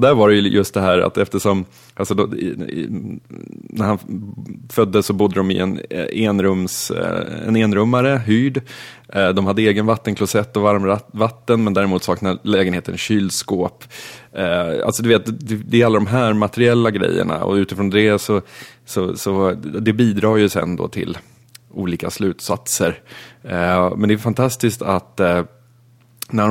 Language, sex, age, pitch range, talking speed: Swedish, male, 20-39, 100-120 Hz, 150 wpm